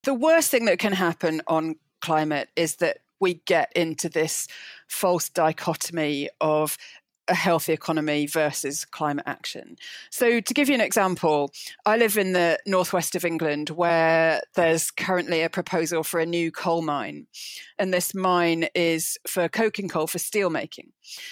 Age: 40-59